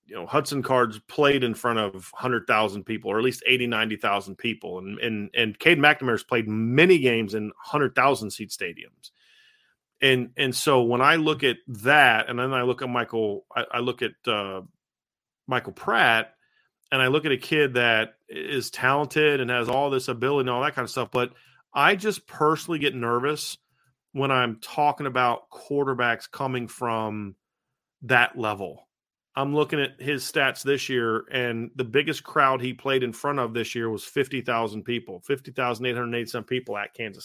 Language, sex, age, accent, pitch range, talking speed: English, male, 40-59, American, 115-135 Hz, 175 wpm